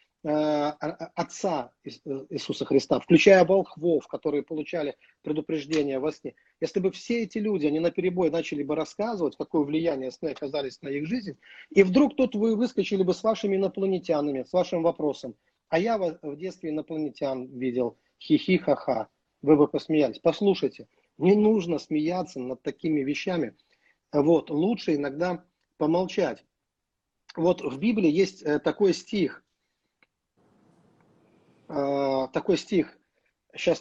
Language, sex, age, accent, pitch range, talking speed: Russian, male, 40-59, native, 150-190 Hz, 130 wpm